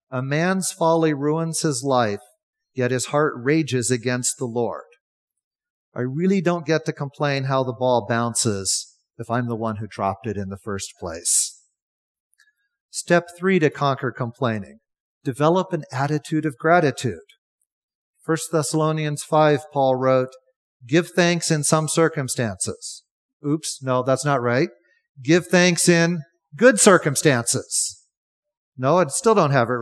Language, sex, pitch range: English, male, 125-175 Hz